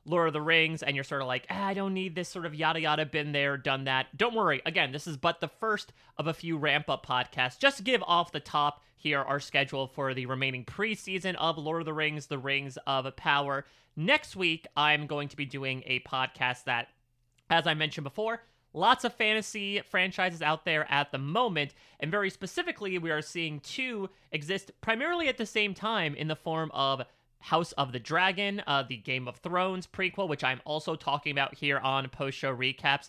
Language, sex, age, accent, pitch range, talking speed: English, male, 30-49, American, 140-190 Hz, 210 wpm